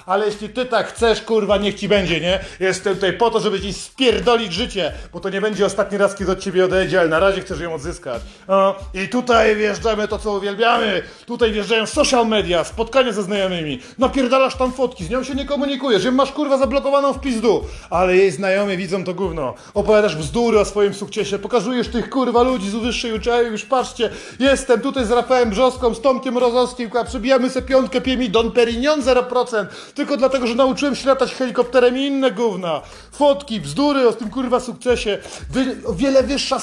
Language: Polish